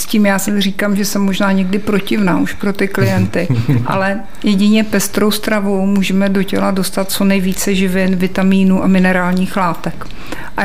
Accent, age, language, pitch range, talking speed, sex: native, 50-69, Czech, 190-210 Hz, 170 wpm, female